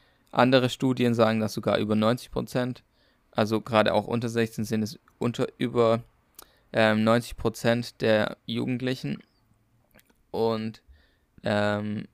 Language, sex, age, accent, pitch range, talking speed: German, male, 20-39, German, 110-120 Hz, 120 wpm